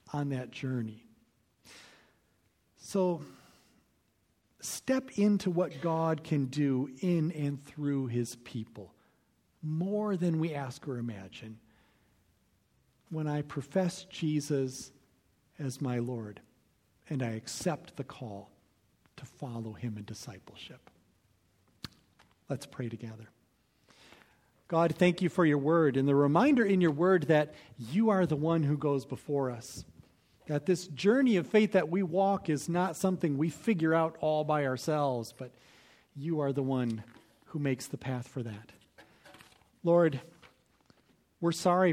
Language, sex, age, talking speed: English, male, 50-69, 135 wpm